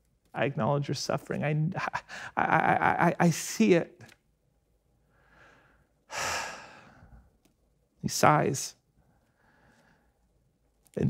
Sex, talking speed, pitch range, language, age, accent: male, 75 wpm, 135-200 Hz, English, 40-59, American